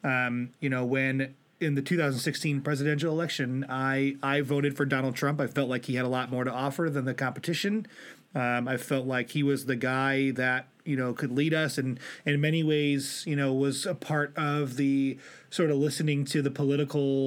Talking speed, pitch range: 210 wpm, 130-150 Hz